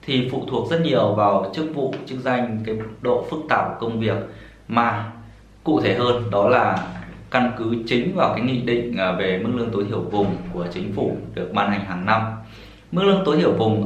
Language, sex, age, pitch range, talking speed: Vietnamese, male, 20-39, 100-125 Hz, 210 wpm